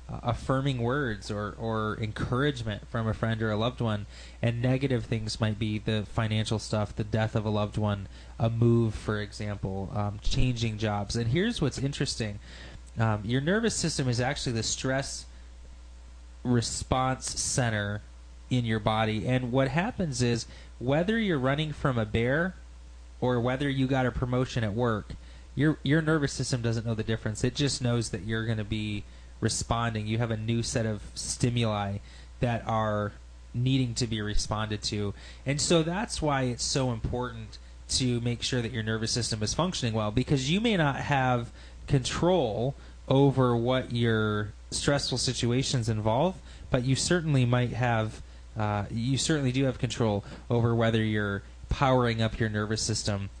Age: 20-39